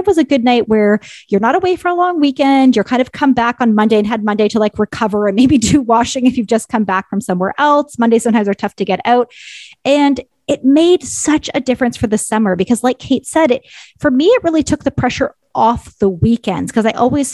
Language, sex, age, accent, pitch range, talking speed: English, female, 30-49, American, 215-280 Hz, 245 wpm